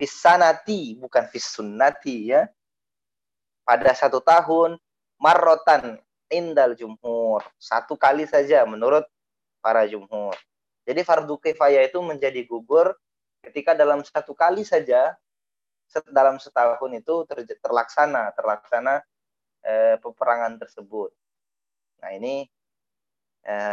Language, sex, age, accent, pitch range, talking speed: Indonesian, male, 20-39, native, 120-160 Hz, 95 wpm